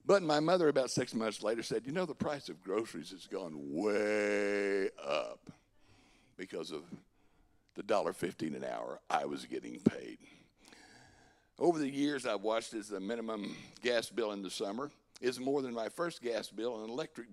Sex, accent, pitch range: male, American, 115-170 Hz